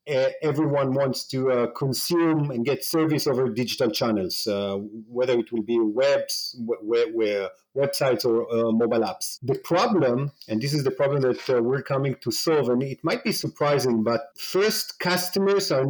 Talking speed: 150 wpm